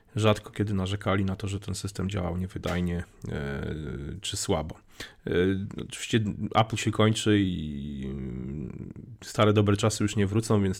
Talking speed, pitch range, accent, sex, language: 135 wpm, 95-110 Hz, native, male, Polish